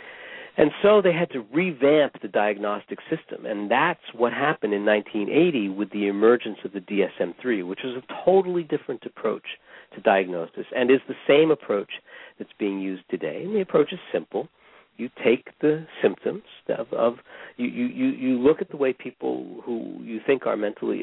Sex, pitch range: male, 105-145 Hz